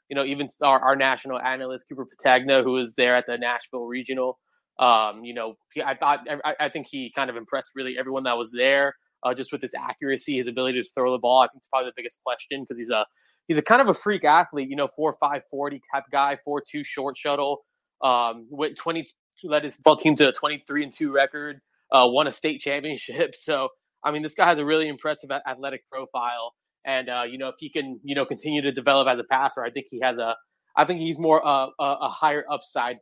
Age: 20-39